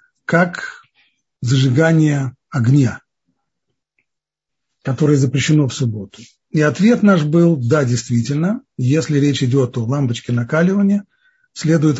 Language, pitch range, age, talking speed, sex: Russian, 125-165 Hz, 50-69, 105 wpm, male